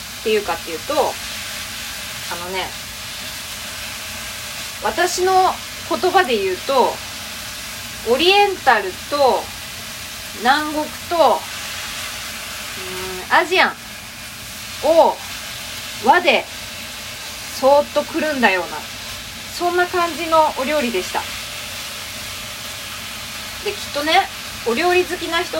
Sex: female